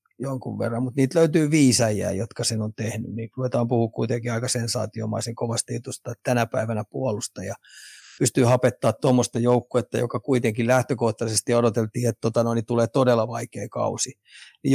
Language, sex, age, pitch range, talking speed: Finnish, male, 30-49, 115-130 Hz, 165 wpm